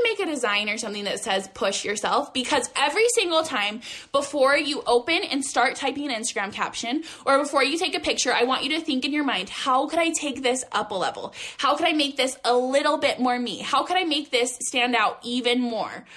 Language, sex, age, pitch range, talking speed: English, female, 10-29, 240-335 Hz, 235 wpm